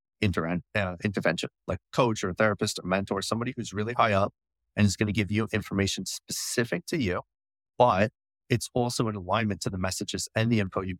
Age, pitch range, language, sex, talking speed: 30-49, 90-110 Hz, English, male, 195 wpm